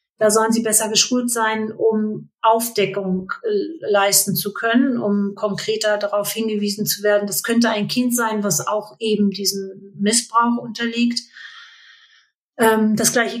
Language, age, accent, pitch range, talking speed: German, 40-59, German, 195-225 Hz, 145 wpm